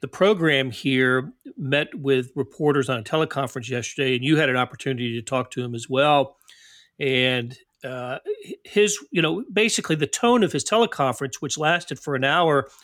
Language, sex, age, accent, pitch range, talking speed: English, male, 40-59, American, 130-180 Hz, 175 wpm